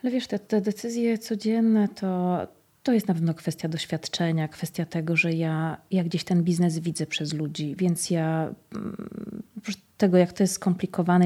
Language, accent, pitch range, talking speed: Polish, native, 165-200 Hz, 170 wpm